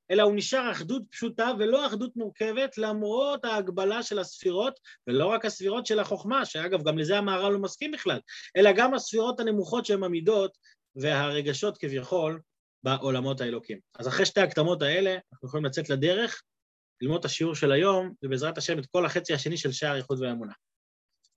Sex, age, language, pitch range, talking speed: male, 30-49, Hebrew, 150-220 Hz, 165 wpm